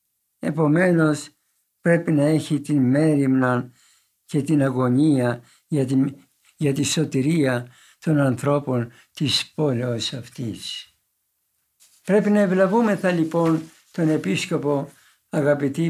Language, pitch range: Greek, 135-180 Hz